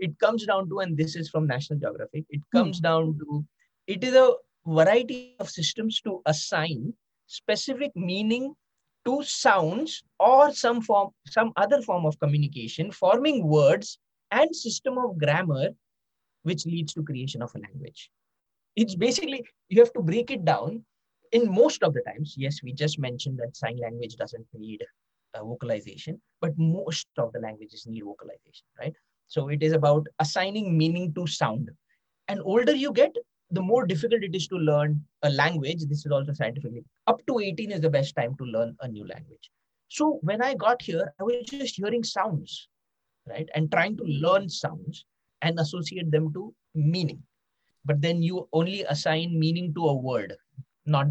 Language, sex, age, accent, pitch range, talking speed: English, male, 20-39, Indian, 150-220 Hz, 170 wpm